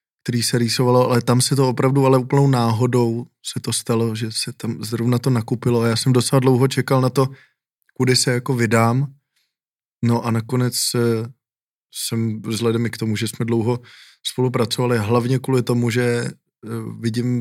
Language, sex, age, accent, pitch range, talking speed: Czech, male, 20-39, native, 120-135 Hz, 170 wpm